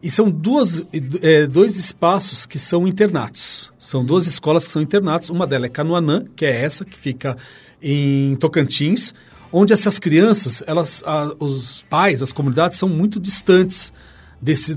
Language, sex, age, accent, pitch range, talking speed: Portuguese, male, 40-59, Brazilian, 125-180 Hz, 150 wpm